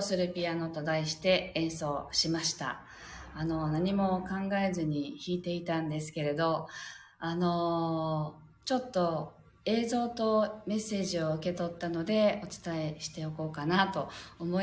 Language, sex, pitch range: Japanese, female, 160-240 Hz